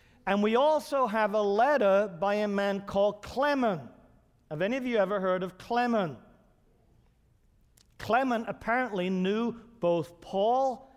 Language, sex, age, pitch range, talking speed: English, male, 50-69, 165-220 Hz, 130 wpm